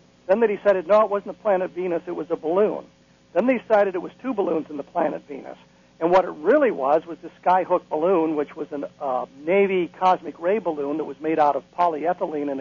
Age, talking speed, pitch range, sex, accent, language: 60-79, 230 wpm, 155-190 Hz, male, American, English